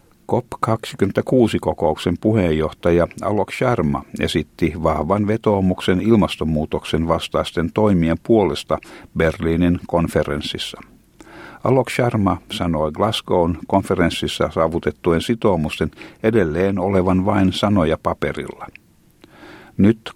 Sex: male